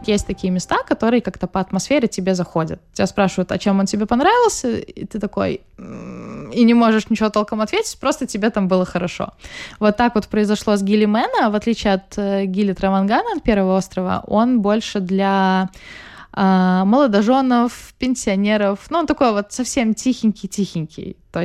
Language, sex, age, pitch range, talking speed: Russian, female, 20-39, 180-215 Hz, 165 wpm